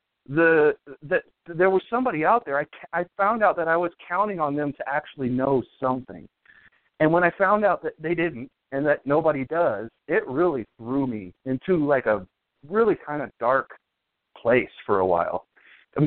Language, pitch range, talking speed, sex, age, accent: English, 120-165 Hz, 185 wpm, male, 40-59, American